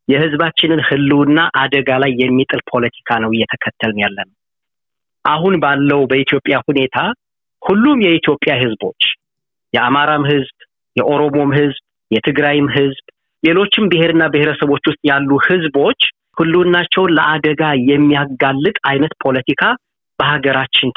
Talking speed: 100 wpm